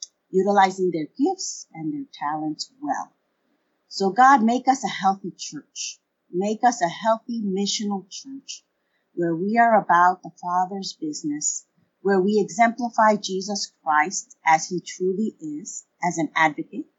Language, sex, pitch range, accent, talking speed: English, female, 185-260 Hz, American, 140 wpm